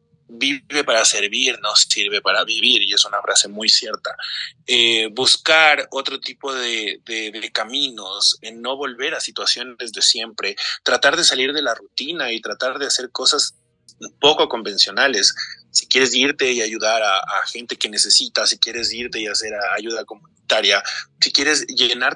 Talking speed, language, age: 165 wpm, Spanish, 30-49